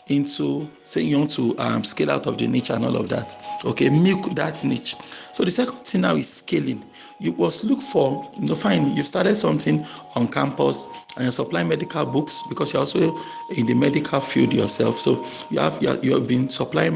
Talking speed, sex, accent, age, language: 210 wpm, male, Nigerian, 40-59, English